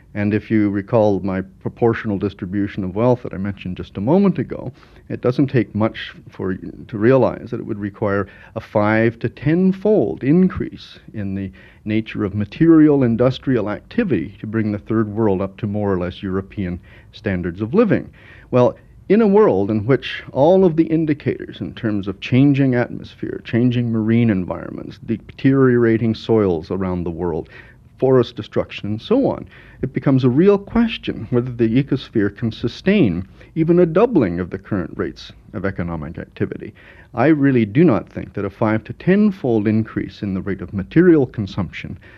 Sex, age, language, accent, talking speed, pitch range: male, 50-69, English, American, 170 wpm, 100-125 Hz